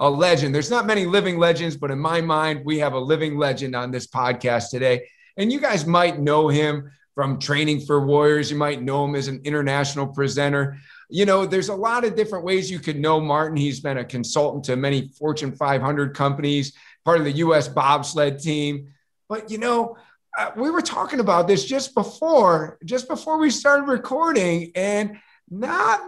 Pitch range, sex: 145-225 Hz, male